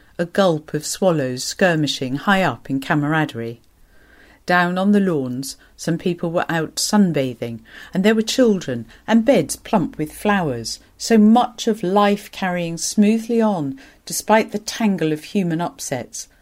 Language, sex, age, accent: English, female, 50-69, British